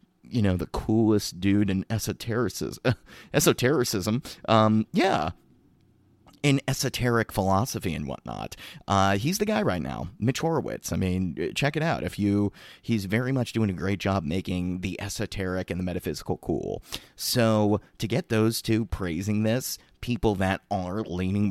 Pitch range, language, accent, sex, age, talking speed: 90-110 Hz, English, American, male, 30-49, 155 wpm